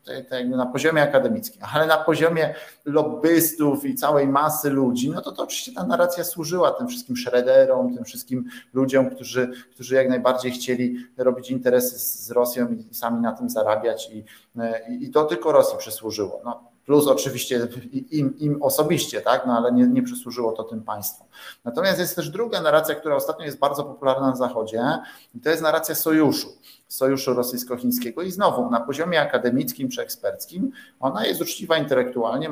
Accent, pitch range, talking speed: native, 125-165 Hz, 165 wpm